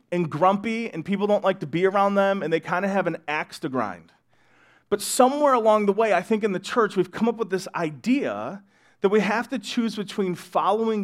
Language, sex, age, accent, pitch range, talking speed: English, male, 30-49, American, 180-220 Hz, 230 wpm